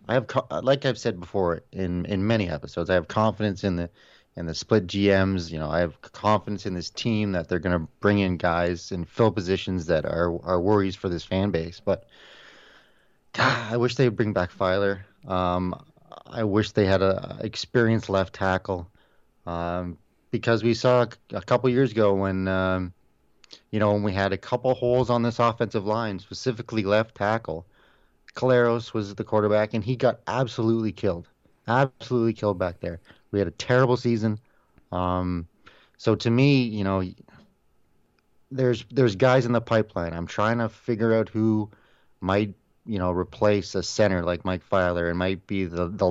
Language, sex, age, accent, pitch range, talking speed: English, male, 30-49, American, 90-115 Hz, 180 wpm